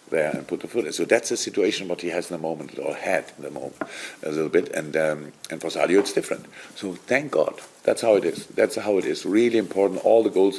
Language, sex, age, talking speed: English, male, 50-69, 265 wpm